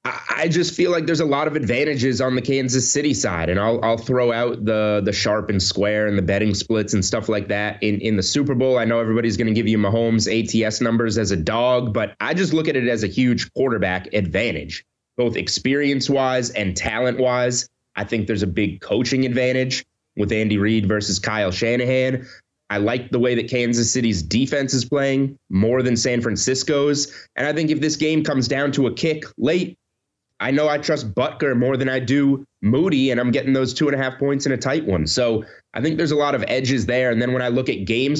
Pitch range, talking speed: 105-130 Hz, 225 wpm